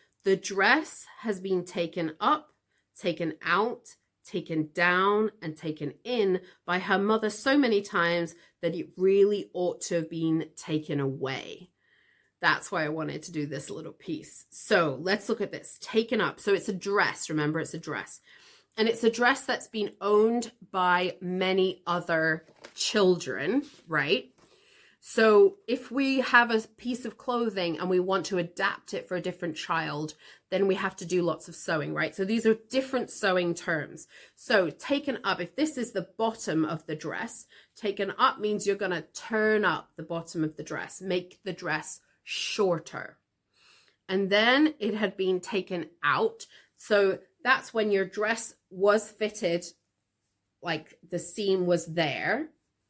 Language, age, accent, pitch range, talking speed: English, 30-49, British, 170-220 Hz, 165 wpm